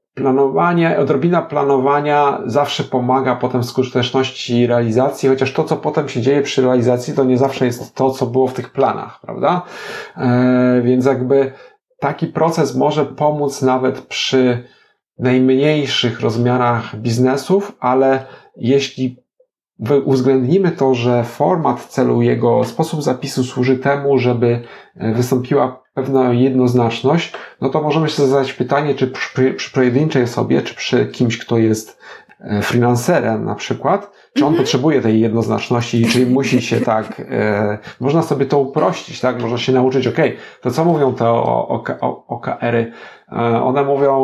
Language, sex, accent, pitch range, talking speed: Polish, male, native, 120-140 Hz, 135 wpm